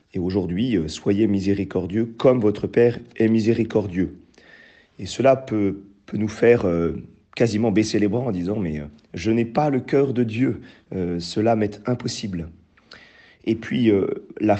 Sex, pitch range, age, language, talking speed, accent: male, 95-125 Hz, 40-59, French, 160 wpm, French